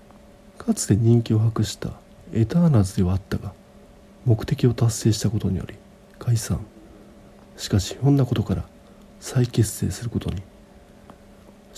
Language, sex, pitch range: Japanese, male, 100-155 Hz